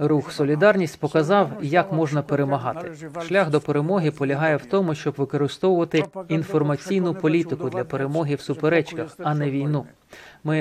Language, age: Ukrainian, 30-49